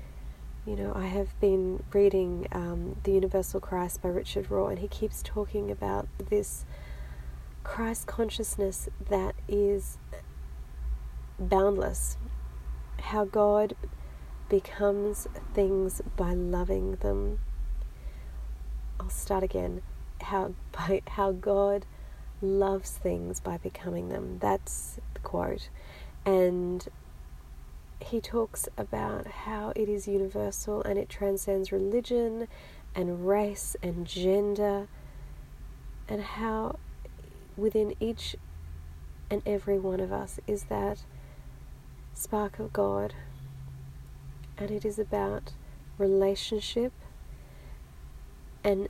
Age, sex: 30-49, female